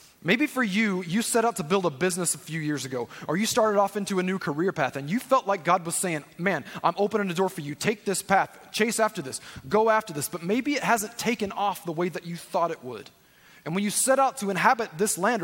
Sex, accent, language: male, American, English